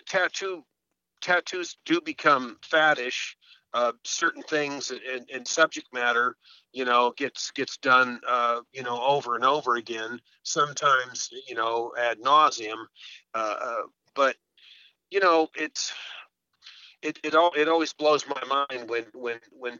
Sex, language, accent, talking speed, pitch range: male, English, American, 135 wpm, 125-155 Hz